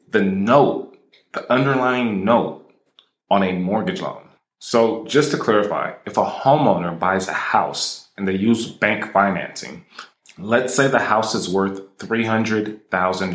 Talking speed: 150 wpm